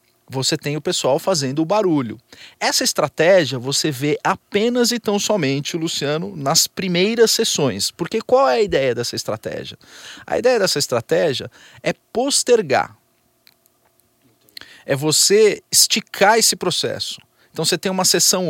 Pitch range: 145-205 Hz